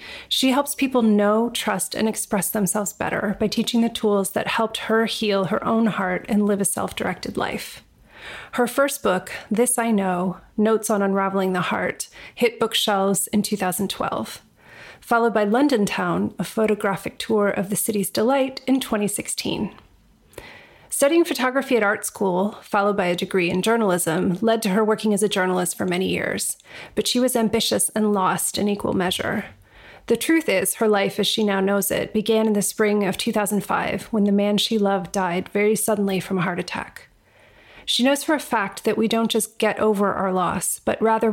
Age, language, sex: 30-49, English, female